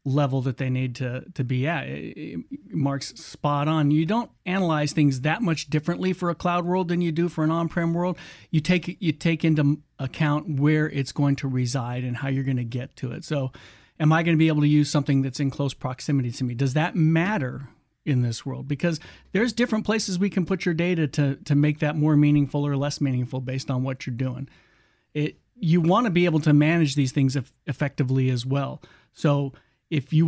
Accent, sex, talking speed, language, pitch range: American, male, 220 wpm, English, 135-160 Hz